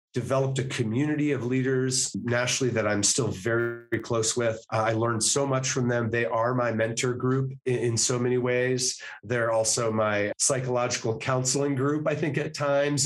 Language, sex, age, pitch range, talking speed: English, male, 30-49, 115-140 Hz, 175 wpm